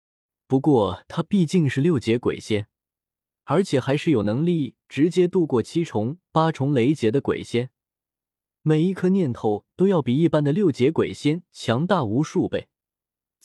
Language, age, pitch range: Chinese, 20-39, 110-160 Hz